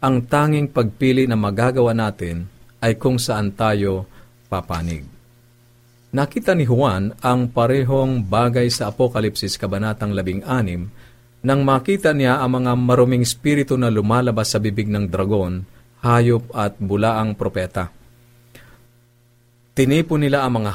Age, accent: 50-69, native